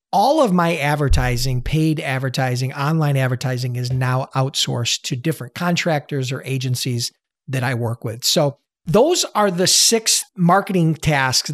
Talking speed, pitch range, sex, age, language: 140 wpm, 135-195 Hz, male, 50-69, English